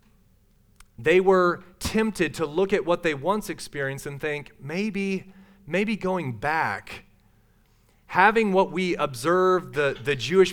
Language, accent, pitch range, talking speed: English, American, 130-175 Hz, 130 wpm